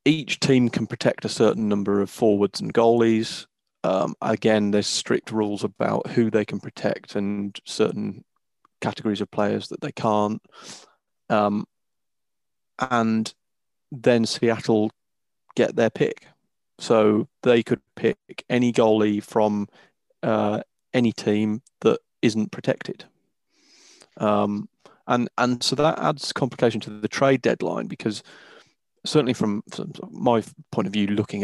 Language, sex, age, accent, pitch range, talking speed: English, male, 30-49, British, 105-120 Hz, 130 wpm